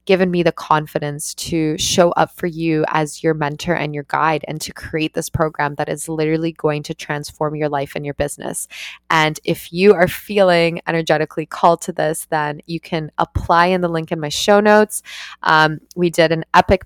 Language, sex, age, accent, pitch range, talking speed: English, female, 20-39, American, 150-170 Hz, 200 wpm